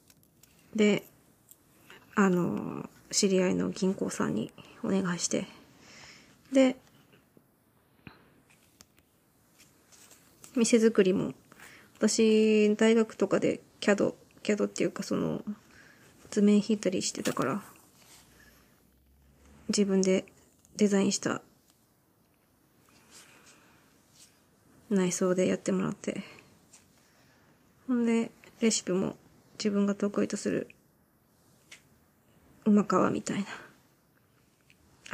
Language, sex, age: Japanese, female, 20-39